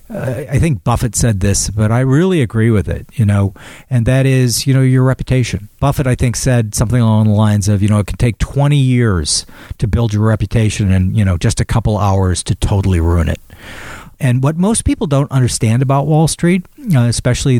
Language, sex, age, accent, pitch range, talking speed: English, male, 50-69, American, 105-145 Hz, 210 wpm